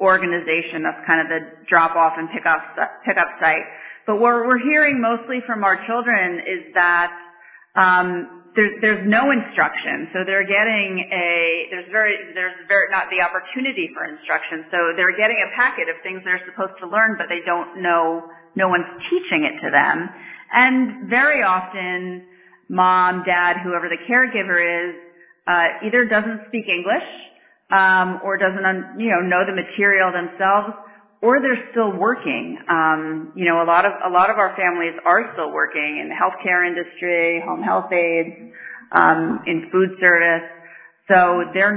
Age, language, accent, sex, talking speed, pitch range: 40-59, Hindi, American, female, 165 wpm, 170-210 Hz